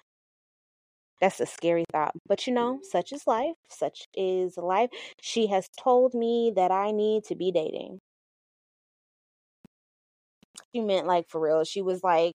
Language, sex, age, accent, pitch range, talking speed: English, female, 20-39, American, 170-245 Hz, 150 wpm